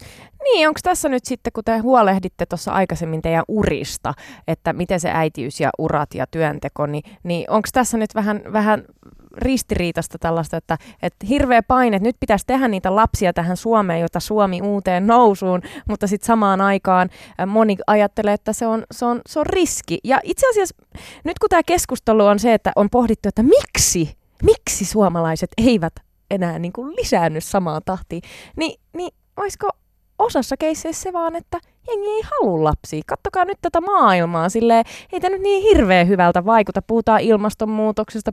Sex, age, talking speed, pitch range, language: female, 20-39, 165 wpm, 175-250 Hz, Finnish